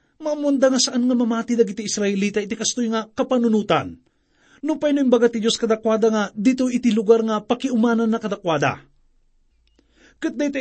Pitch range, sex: 180-250 Hz, male